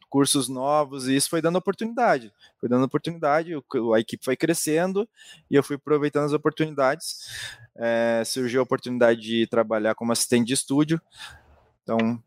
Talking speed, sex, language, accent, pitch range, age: 145 wpm, male, Portuguese, Brazilian, 120-150 Hz, 20-39